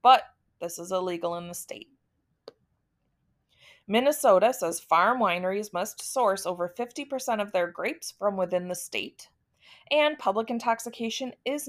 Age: 20-39